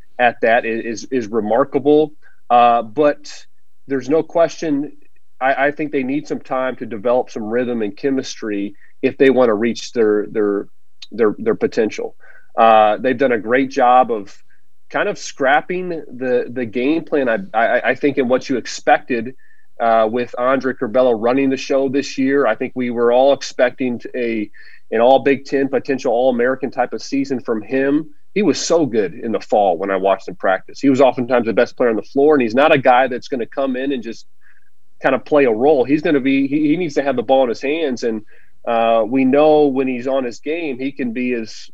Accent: American